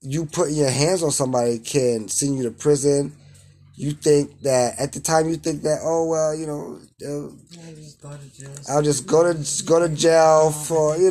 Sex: male